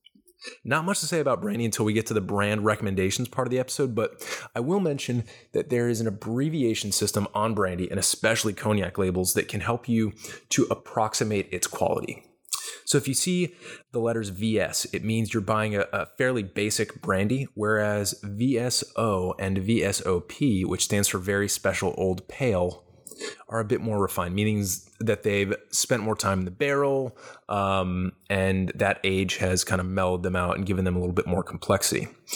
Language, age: English, 20-39